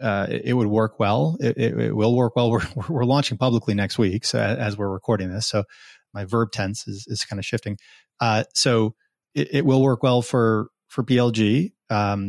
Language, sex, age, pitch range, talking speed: English, male, 30-49, 110-130 Hz, 205 wpm